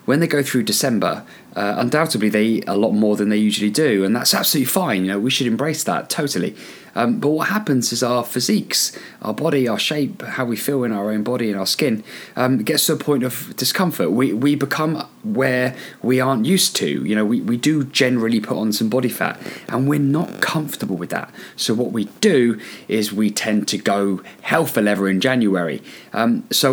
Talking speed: 215 wpm